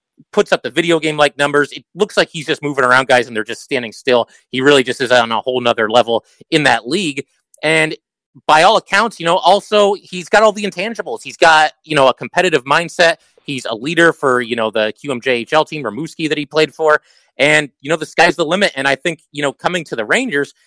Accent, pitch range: American, 125-165 Hz